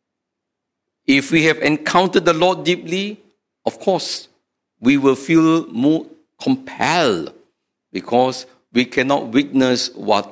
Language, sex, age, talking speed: English, male, 60-79, 110 wpm